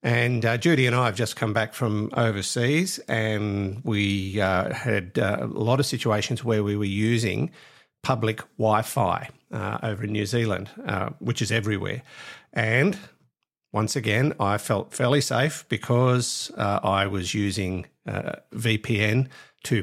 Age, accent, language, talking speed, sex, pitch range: 50-69, Australian, English, 150 wpm, male, 100-130 Hz